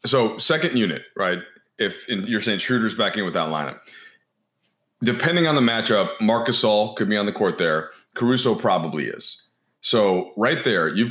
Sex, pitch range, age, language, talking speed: male, 90-120 Hz, 30-49, English, 180 wpm